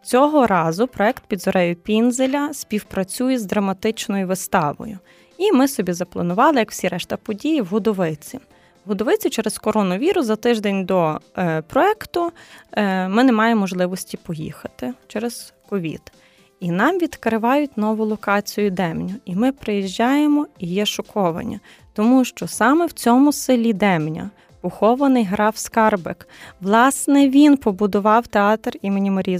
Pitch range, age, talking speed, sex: 195-245 Hz, 20-39, 130 wpm, female